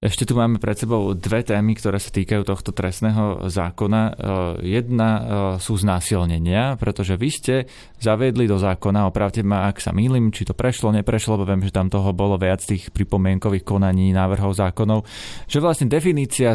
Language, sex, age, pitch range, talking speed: Slovak, male, 20-39, 100-120 Hz, 165 wpm